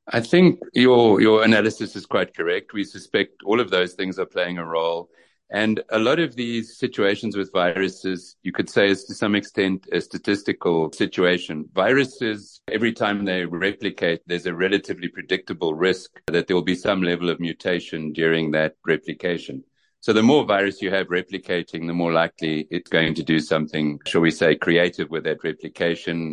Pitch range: 80-100 Hz